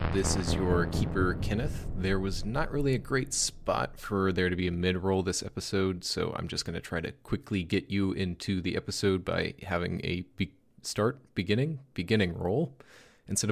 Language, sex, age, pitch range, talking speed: English, male, 30-49, 90-105 Hz, 180 wpm